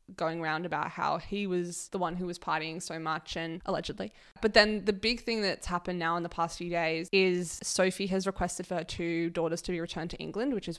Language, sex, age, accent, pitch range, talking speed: English, female, 20-39, Australian, 170-195 Hz, 240 wpm